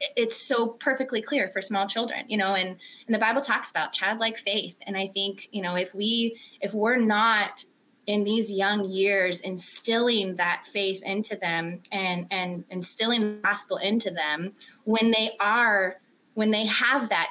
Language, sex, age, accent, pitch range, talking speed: English, female, 20-39, American, 195-235 Hz, 175 wpm